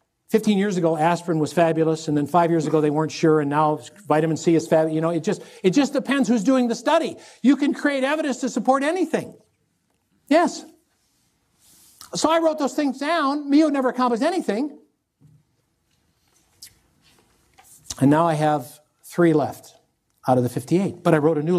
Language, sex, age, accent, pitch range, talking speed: English, male, 60-79, American, 165-250 Hz, 180 wpm